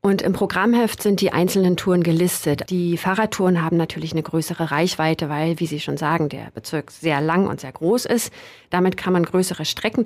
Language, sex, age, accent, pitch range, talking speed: German, female, 40-59, German, 165-195 Hz, 195 wpm